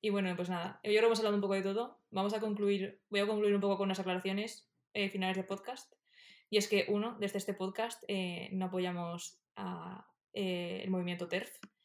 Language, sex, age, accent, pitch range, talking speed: Spanish, female, 20-39, Spanish, 180-205 Hz, 215 wpm